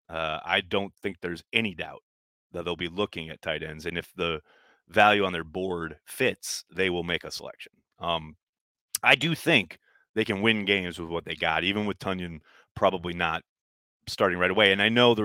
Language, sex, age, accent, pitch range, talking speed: English, male, 30-49, American, 85-115 Hz, 200 wpm